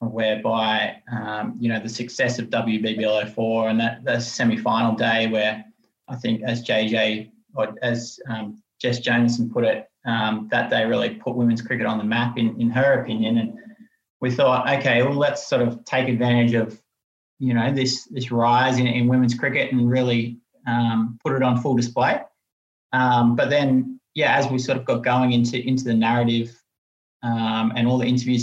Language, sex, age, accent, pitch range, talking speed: English, male, 20-39, Australian, 115-125 Hz, 185 wpm